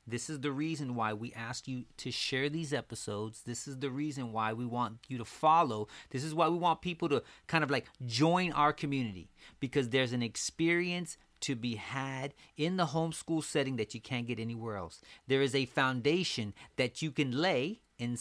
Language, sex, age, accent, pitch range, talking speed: English, male, 30-49, American, 125-175 Hz, 200 wpm